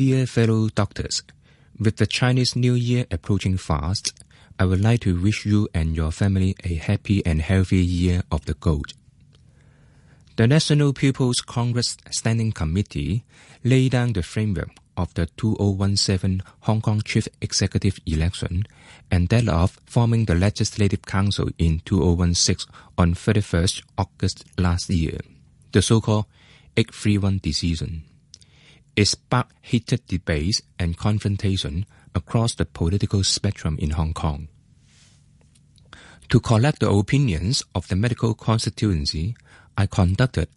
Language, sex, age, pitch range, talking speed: English, male, 20-39, 90-115 Hz, 130 wpm